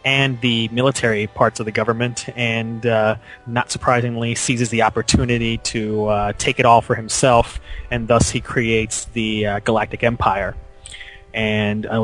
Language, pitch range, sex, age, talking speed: English, 110-120 Hz, male, 30-49, 155 wpm